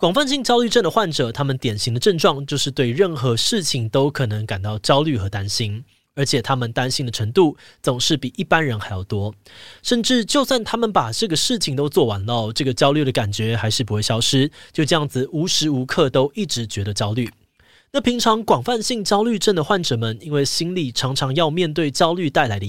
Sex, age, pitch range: male, 20-39, 120-175 Hz